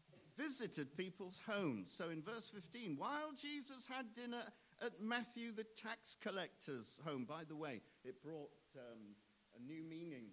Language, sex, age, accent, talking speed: English, male, 50-69, British, 150 wpm